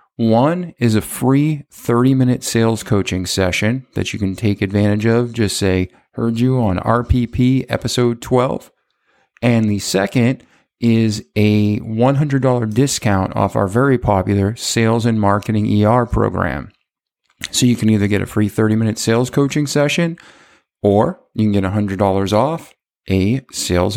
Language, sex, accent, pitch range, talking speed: English, male, American, 105-130 Hz, 145 wpm